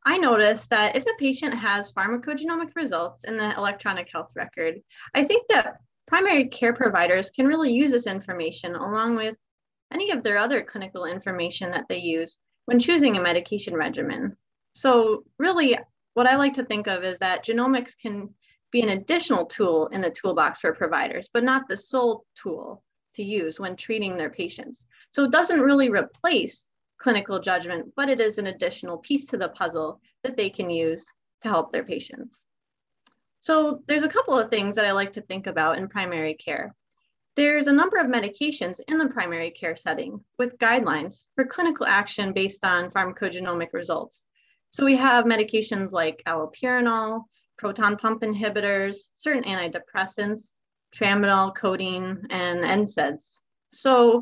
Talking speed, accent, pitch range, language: 165 wpm, American, 190-260 Hz, English